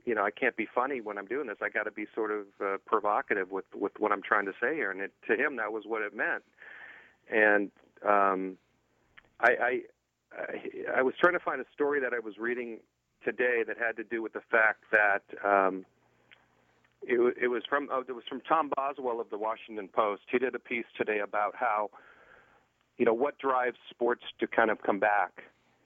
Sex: male